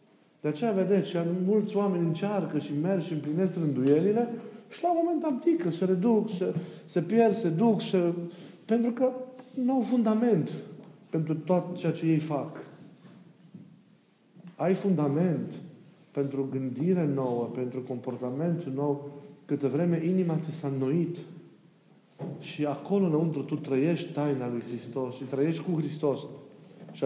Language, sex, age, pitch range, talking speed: Romanian, male, 50-69, 140-190 Hz, 140 wpm